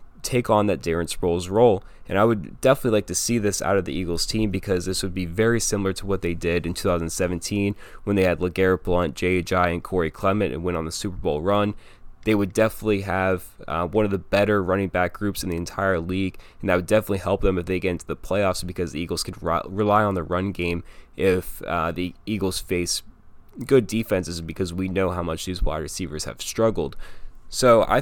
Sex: male